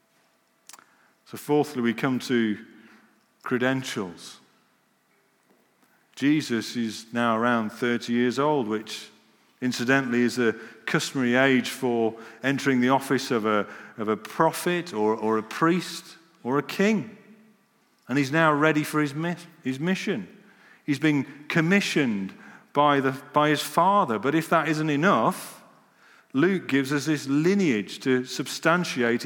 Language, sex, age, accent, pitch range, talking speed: English, male, 40-59, British, 120-150 Hz, 130 wpm